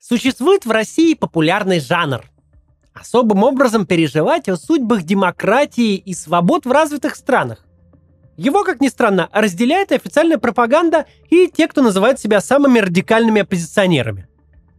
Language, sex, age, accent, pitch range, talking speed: Russian, male, 30-49, native, 180-275 Hz, 130 wpm